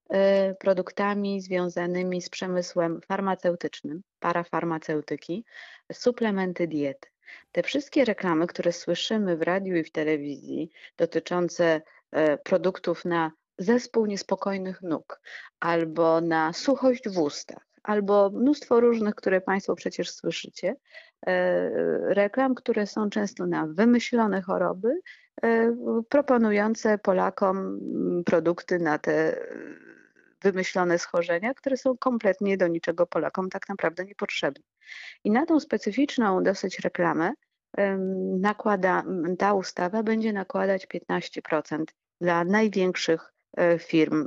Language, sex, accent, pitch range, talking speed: Polish, female, native, 170-215 Hz, 100 wpm